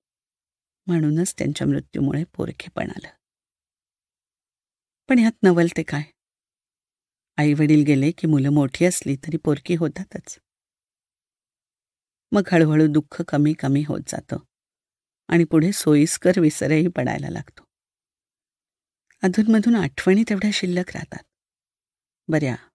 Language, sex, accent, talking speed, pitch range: Marathi, female, native, 100 wpm, 150-195 Hz